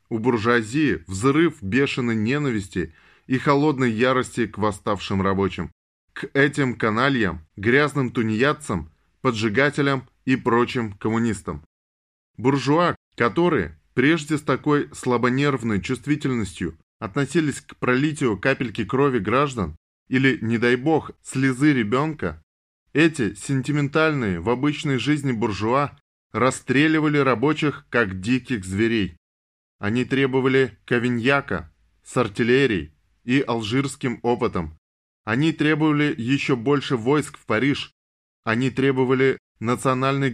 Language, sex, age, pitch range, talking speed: Russian, male, 20-39, 100-140 Hz, 100 wpm